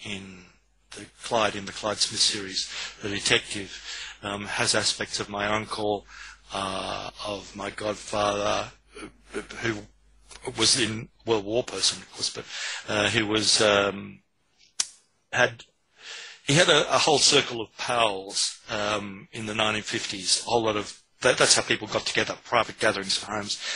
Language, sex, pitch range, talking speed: English, male, 105-120 Hz, 155 wpm